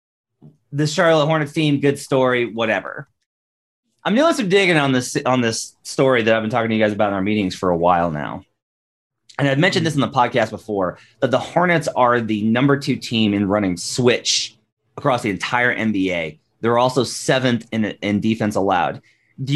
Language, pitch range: English, 105-145 Hz